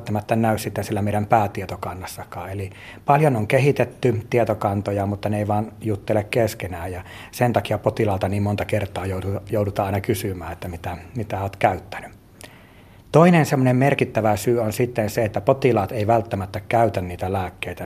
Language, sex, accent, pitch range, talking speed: Finnish, male, native, 95-115 Hz, 150 wpm